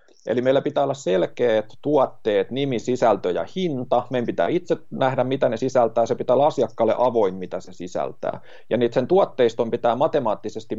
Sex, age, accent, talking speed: male, 30-49, native, 165 wpm